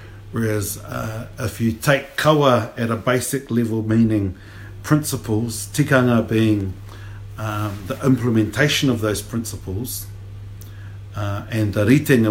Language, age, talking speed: English, 50-69, 115 wpm